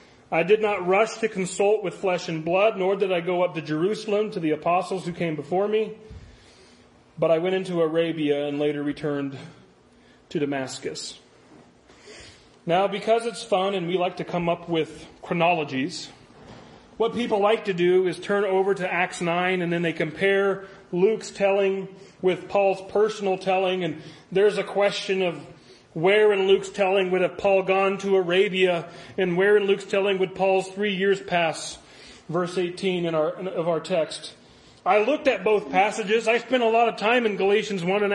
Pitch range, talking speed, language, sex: 170-205 Hz, 180 wpm, English, male